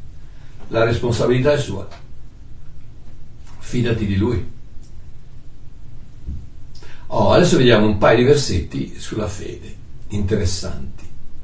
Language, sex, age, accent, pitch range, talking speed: Italian, male, 60-79, native, 110-145 Hz, 90 wpm